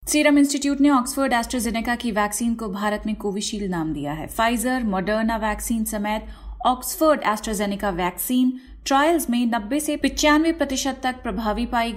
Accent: native